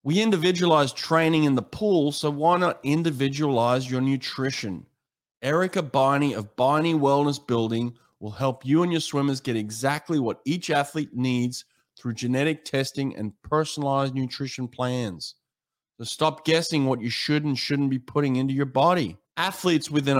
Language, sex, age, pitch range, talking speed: English, male, 30-49, 120-150 Hz, 155 wpm